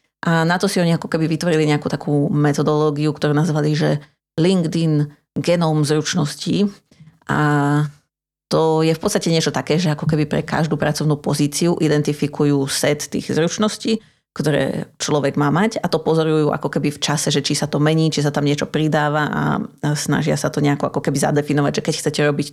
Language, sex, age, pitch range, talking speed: Slovak, female, 30-49, 150-165 Hz, 180 wpm